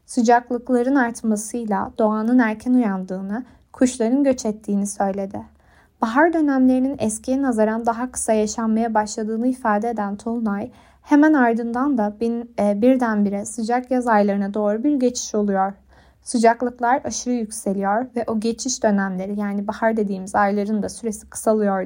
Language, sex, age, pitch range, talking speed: Turkish, female, 20-39, 210-250 Hz, 130 wpm